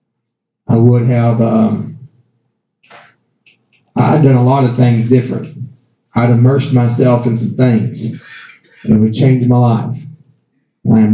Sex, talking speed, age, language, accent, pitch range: male, 130 wpm, 40-59, English, American, 120-145 Hz